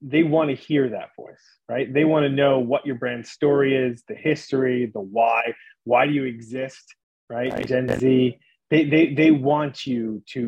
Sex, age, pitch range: male, 30-49, 115-145 Hz